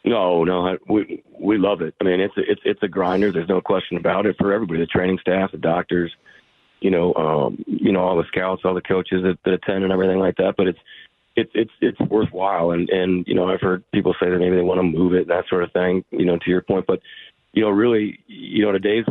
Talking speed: 260 wpm